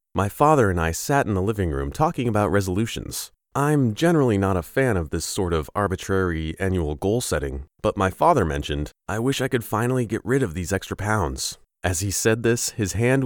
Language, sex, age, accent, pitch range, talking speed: English, male, 30-49, American, 90-130 Hz, 210 wpm